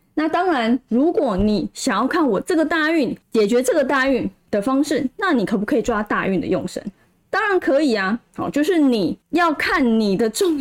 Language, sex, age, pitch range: Chinese, female, 20-39, 200-275 Hz